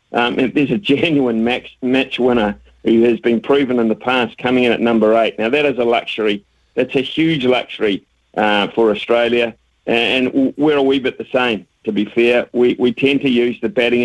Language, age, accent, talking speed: English, 50-69, Australian, 205 wpm